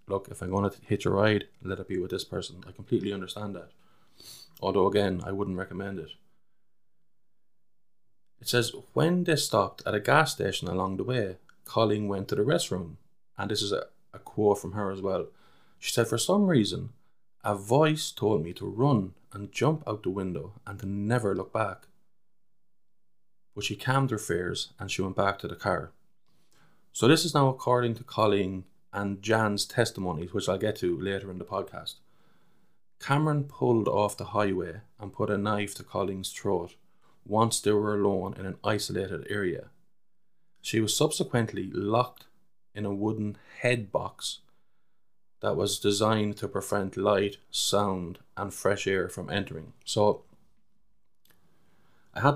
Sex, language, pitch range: male, English, 95-120 Hz